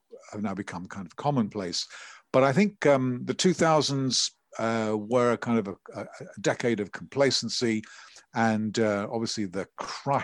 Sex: male